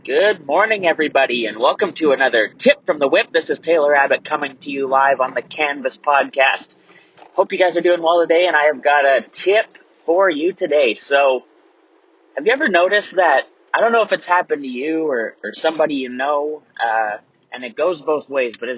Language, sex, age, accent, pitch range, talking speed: English, male, 30-49, American, 125-155 Hz, 210 wpm